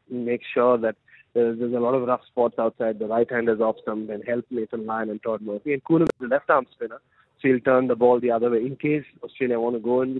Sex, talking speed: male, 255 wpm